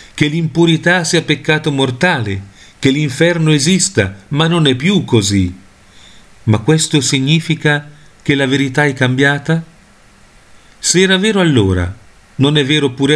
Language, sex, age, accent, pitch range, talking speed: Italian, male, 40-59, native, 110-155 Hz, 130 wpm